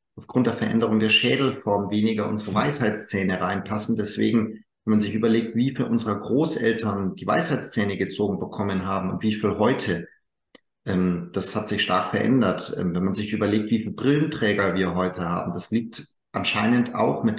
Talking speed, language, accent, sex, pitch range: 160 wpm, German, German, male, 105-125 Hz